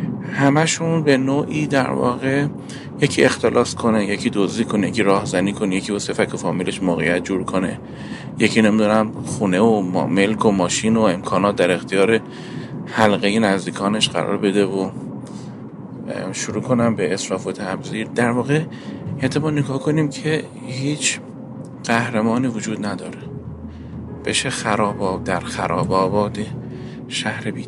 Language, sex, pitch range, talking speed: Persian, male, 105-135 Hz, 130 wpm